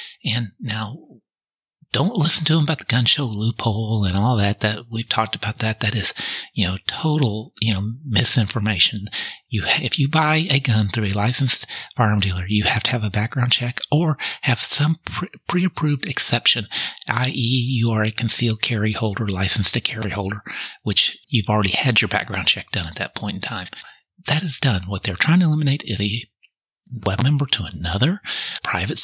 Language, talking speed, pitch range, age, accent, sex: English, 185 wpm, 100-130 Hz, 40-59, American, male